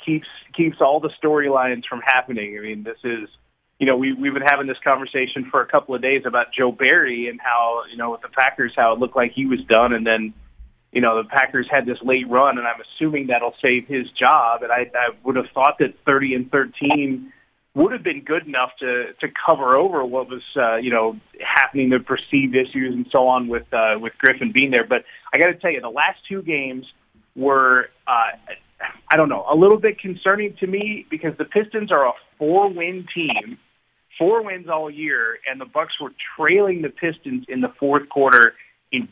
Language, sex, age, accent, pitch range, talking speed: English, male, 30-49, American, 125-155 Hz, 215 wpm